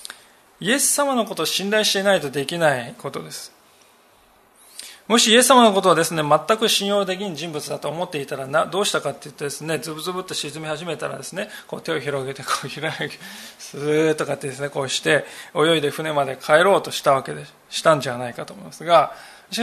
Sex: male